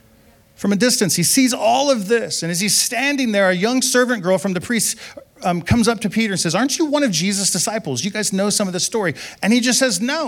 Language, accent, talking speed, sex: English, American, 265 wpm, male